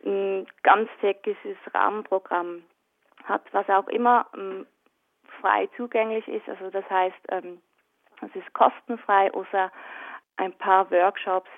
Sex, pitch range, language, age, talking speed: female, 190-235 Hz, German, 20-39, 110 wpm